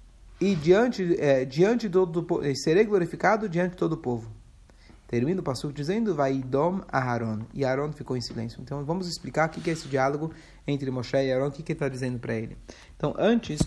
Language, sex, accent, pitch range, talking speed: Portuguese, male, Brazilian, 130-185 Hz, 200 wpm